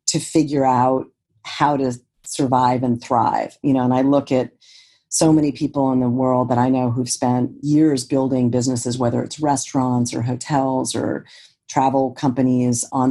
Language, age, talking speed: English, 40-59, 170 wpm